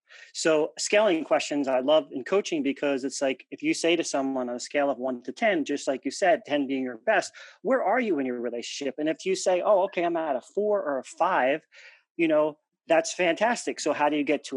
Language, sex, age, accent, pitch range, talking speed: English, male, 40-59, American, 145-225 Hz, 245 wpm